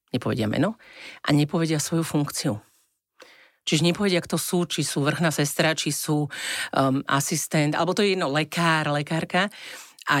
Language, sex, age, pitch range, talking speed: Slovak, female, 40-59, 135-170 Hz, 155 wpm